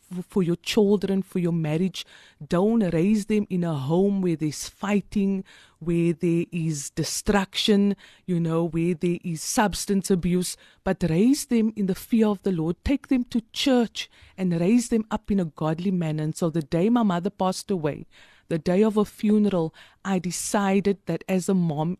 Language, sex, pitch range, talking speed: German, female, 170-205 Hz, 180 wpm